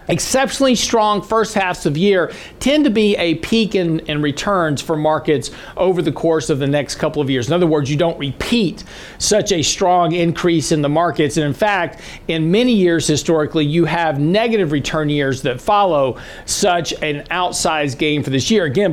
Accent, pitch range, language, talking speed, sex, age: American, 160-210 Hz, English, 195 wpm, male, 50-69